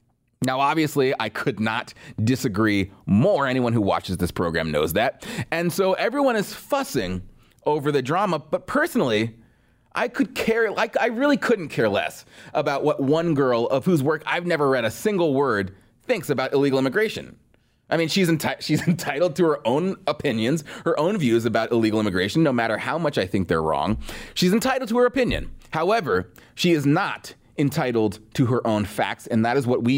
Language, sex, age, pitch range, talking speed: English, male, 30-49, 115-170 Hz, 185 wpm